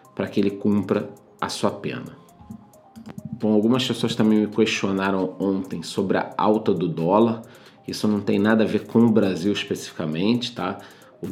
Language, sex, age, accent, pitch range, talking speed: Portuguese, male, 40-59, Brazilian, 95-115 Hz, 165 wpm